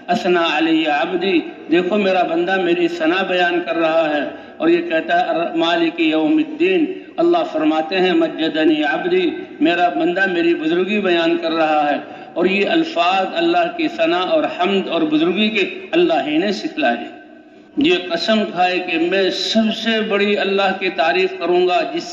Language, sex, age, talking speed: Urdu, male, 60-79, 165 wpm